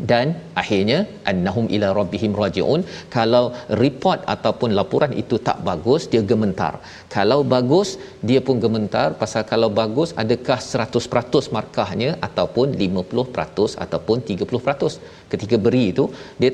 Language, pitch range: Malayalam, 105-130 Hz